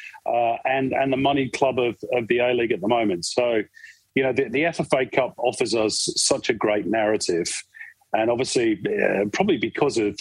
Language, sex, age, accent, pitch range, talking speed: English, male, 40-59, British, 105-135 Hz, 190 wpm